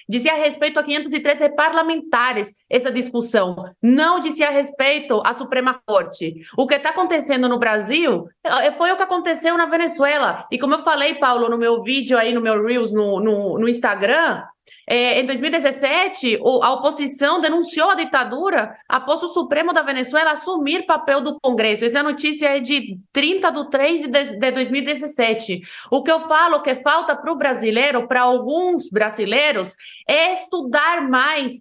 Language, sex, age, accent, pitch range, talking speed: Portuguese, female, 20-39, Brazilian, 240-305 Hz, 175 wpm